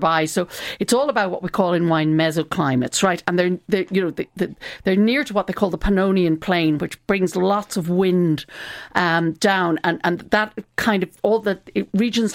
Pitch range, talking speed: 165-205 Hz, 185 wpm